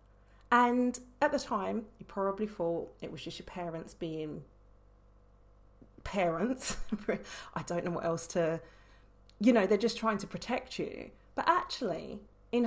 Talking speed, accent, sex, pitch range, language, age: 145 wpm, British, female, 170-230 Hz, English, 40-59